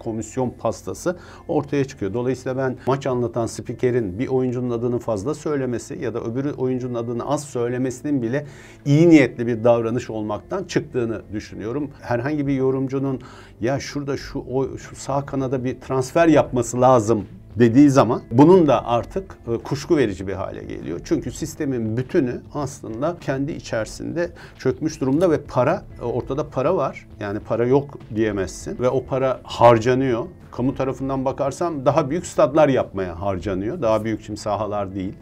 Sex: male